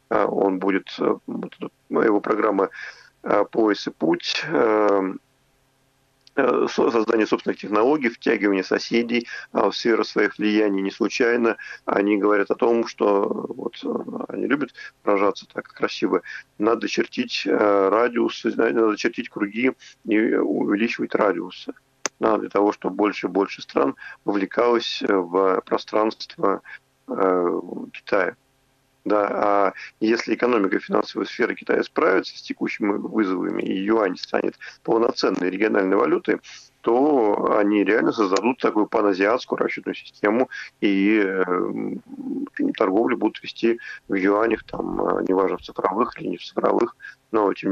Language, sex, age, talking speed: Russian, male, 40-59, 115 wpm